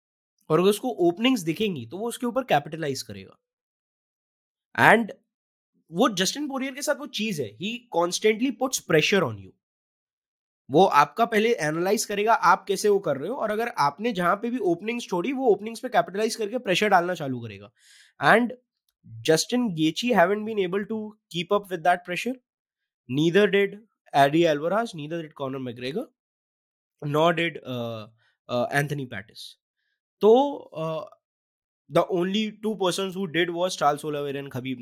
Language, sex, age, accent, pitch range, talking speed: Hindi, male, 20-39, native, 150-235 Hz, 85 wpm